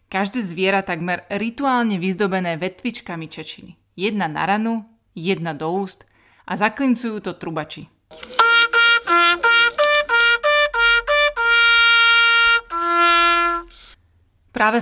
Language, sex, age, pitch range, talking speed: Slovak, female, 30-49, 175-230 Hz, 75 wpm